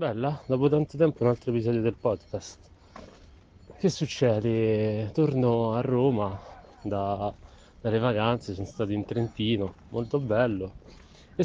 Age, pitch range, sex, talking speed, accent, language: 30-49, 105-130 Hz, male, 125 wpm, native, Italian